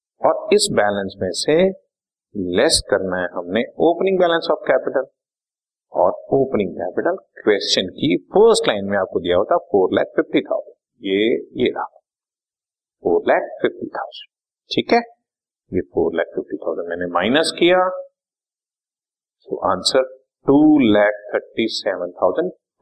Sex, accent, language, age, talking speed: male, native, Hindi, 50-69, 110 wpm